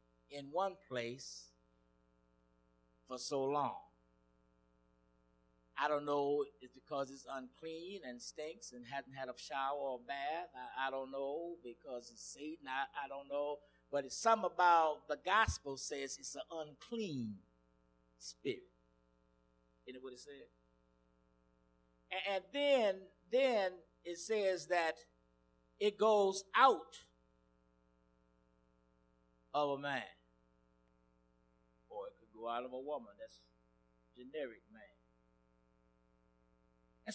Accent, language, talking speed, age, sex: American, English, 115 wpm, 50-69, male